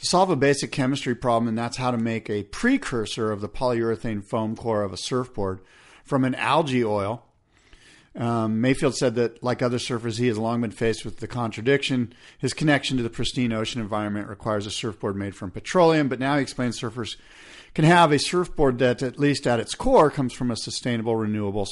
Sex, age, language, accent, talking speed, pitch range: male, 50-69, English, American, 200 wpm, 110-135 Hz